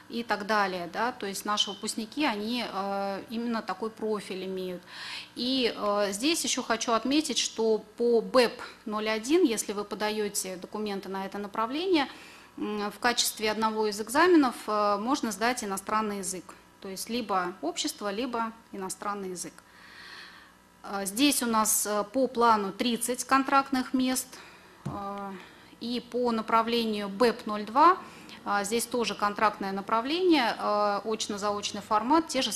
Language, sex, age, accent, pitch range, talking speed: Russian, female, 30-49, native, 195-240 Hz, 120 wpm